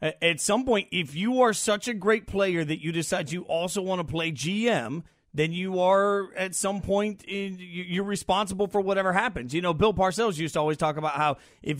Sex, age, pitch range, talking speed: male, 30-49, 155-210 Hz, 210 wpm